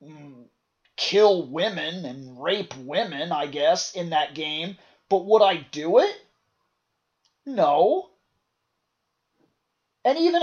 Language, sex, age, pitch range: English, male, 30-49, 190-265 Hz